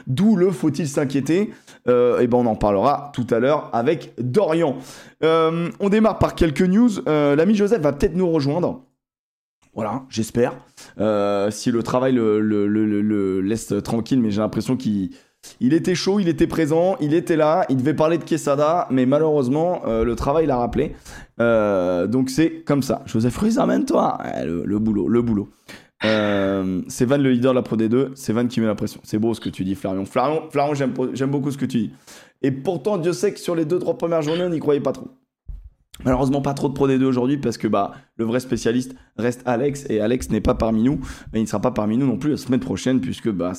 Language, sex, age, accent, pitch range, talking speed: French, male, 20-39, French, 115-155 Hz, 220 wpm